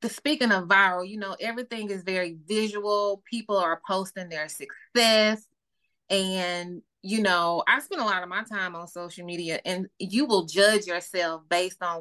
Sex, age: female, 20-39